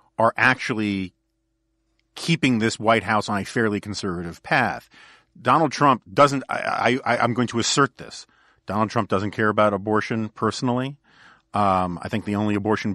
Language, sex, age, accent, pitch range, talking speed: English, male, 40-59, American, 105-125 Hz, 150 wpm